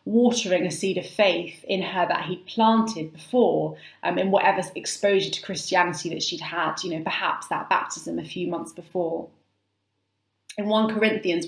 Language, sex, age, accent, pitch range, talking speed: English, female, 20-39, British, 165-215 Hz, 165 wpm